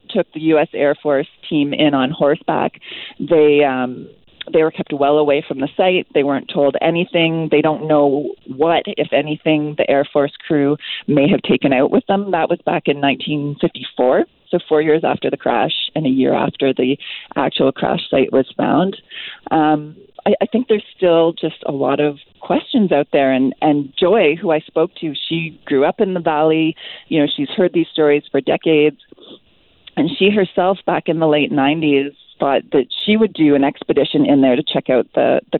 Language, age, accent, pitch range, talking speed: English, 40-59, American, 150-180 Hz, 195 wpm